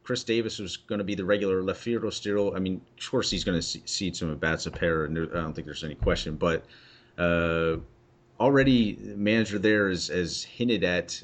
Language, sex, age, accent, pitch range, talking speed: English, male, 30-49, American, 90-110 Hz, 215 wpm